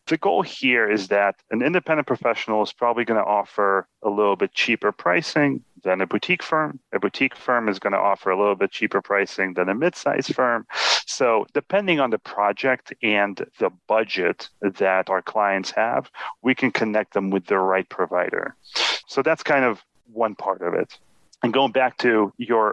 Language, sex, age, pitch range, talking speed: English, male, 30-49, 100-135 Hz, 190 wpm